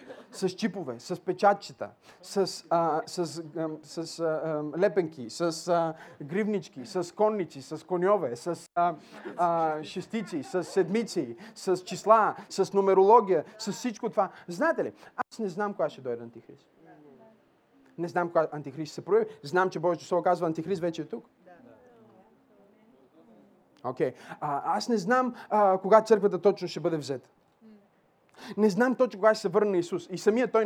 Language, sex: Bulgarian, male